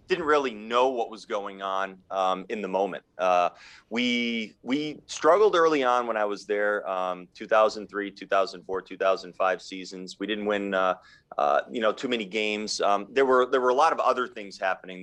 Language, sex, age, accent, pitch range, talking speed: English, male, 30-49, American, 95-125 Hz, 190 wpm